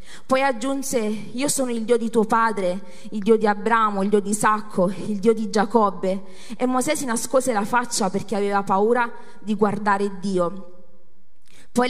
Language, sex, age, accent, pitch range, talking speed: Italian, female, 30-49, native, 200-235 Hz, 170 wpm